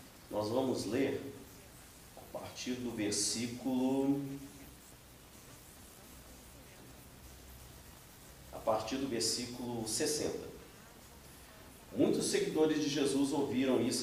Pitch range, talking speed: 110-140 Hz, 75 wpm